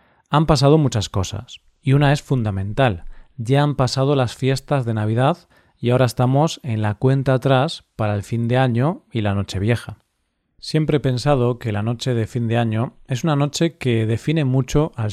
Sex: male